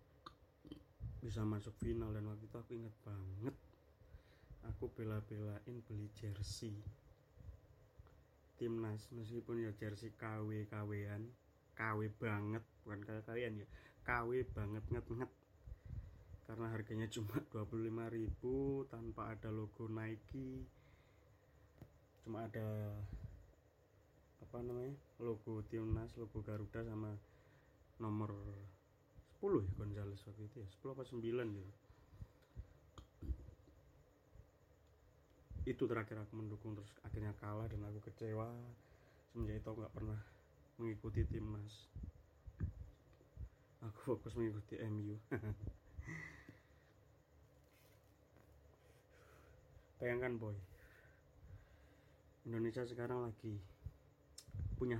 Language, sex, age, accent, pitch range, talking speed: Indonesian, male, 20-39, native, 100-115 Hz, 85 wpm